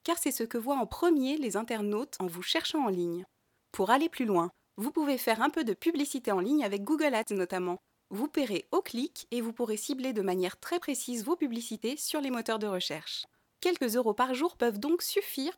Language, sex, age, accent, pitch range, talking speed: French, female, 30-49, French, 200-285 Hz, 220 wpm